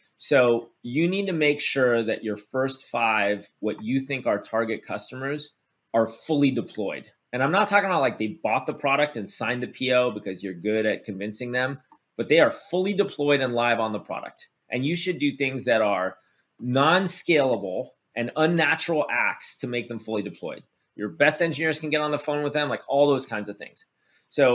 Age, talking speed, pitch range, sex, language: 30-49, 200 wpm, 110-145 Hz, male, English